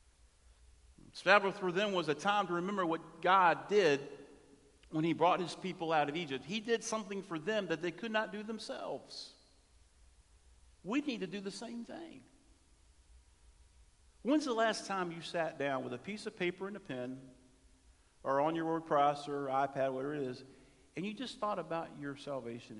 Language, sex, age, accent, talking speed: English, male, 50-69, American, 180 wpm